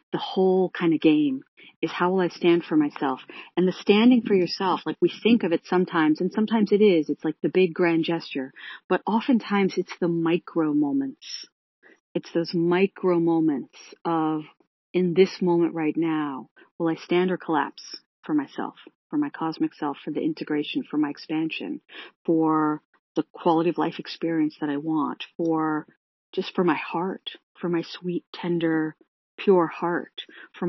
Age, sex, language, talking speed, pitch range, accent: 40-59, female, English, 170 wpm, 155-190 Hz, American